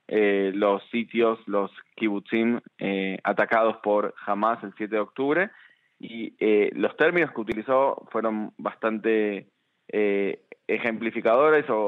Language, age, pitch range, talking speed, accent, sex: Spanish, 20-39, 105-120 Hz, 115 wpm, Argentinian, male